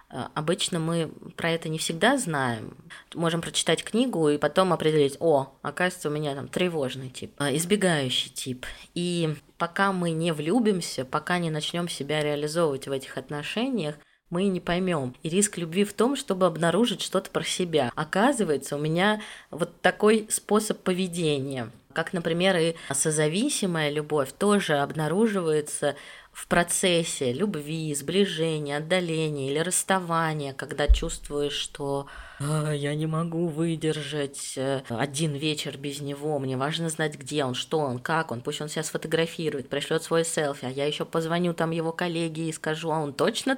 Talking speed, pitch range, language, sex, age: 150 wpm, 145-180 Hz, Russian, female, 20-39